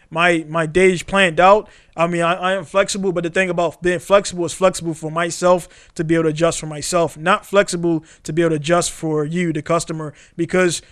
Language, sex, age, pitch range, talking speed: English, male, 20-39, 165-190 Hz, 220 wpm